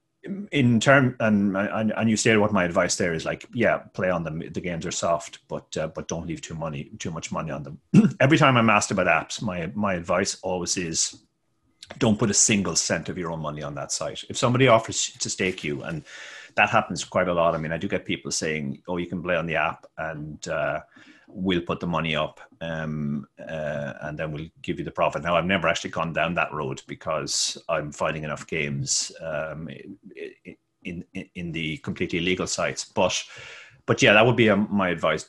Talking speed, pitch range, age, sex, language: 215 wpm, 75-105 Hz, 30-49, male, English